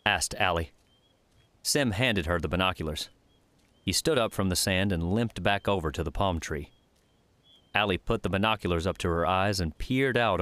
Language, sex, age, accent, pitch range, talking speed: English, male, 30-49, American, 85-110 Hz, 185 wpm